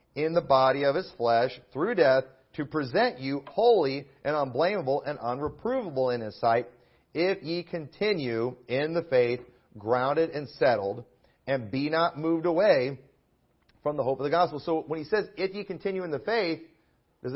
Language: English